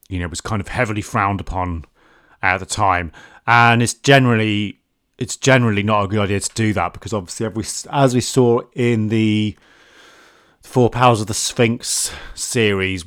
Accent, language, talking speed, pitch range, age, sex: British, English, 175 wpm, 90-105 Hz, 30-49, male